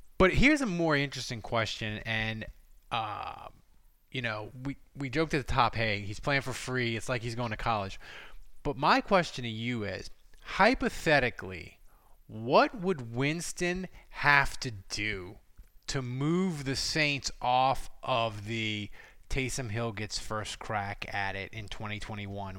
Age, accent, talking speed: 20-39, American, 150 wpm